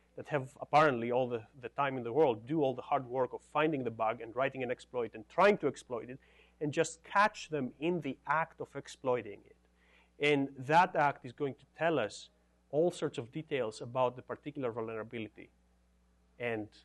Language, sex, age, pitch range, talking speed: English, male, 30-49, 110-145 Hz, 195 wpm